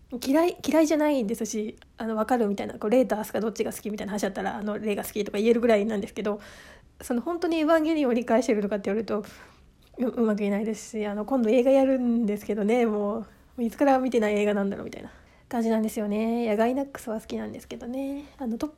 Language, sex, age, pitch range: Japanese, female, 20-39, 210-255 Hz